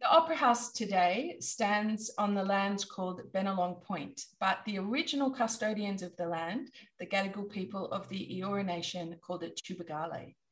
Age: 30-49